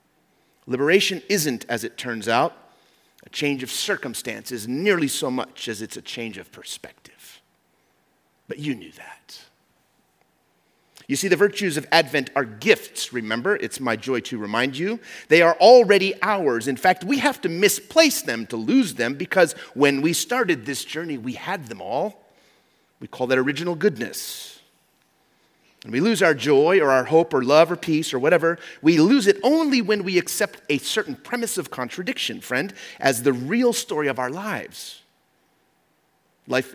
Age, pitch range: 30-49, 130-190 Hz